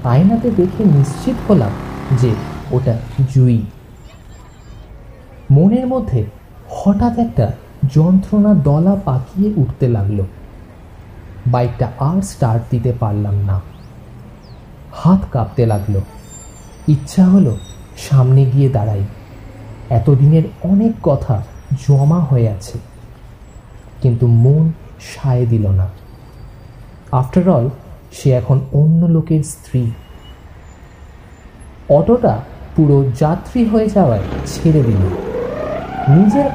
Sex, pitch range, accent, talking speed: male, 115-160 Hz, native, 75 wpm